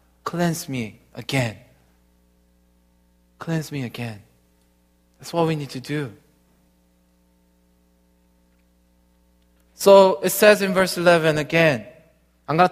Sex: male